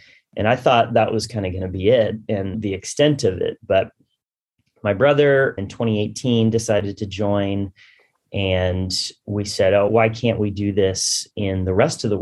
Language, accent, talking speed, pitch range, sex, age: English, American, 185 wpm, 95-115 Hz, male, 30-49